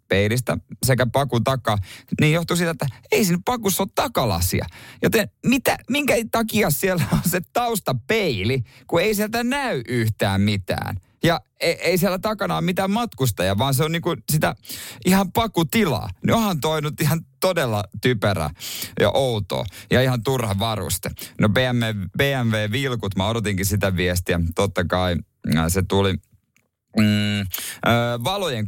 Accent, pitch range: native, 105-140 Hz